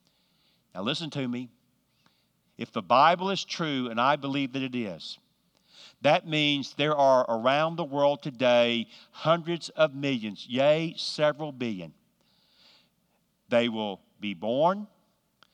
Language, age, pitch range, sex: English, 50-69, 120-150 Hz, male